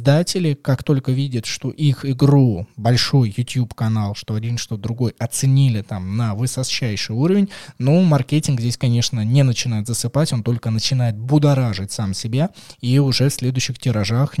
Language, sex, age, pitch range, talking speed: Russian, male, 20-39, 115-150 Hz, 150 wpm